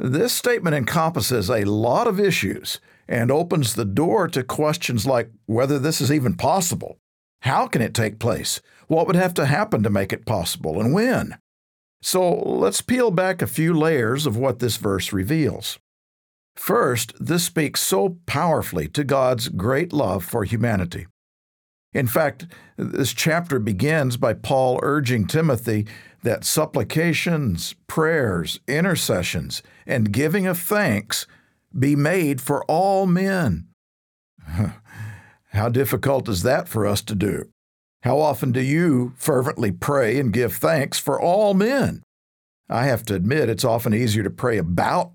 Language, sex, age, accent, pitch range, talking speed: English, male, 50-69, American, 105-150 Hz, 145 wpm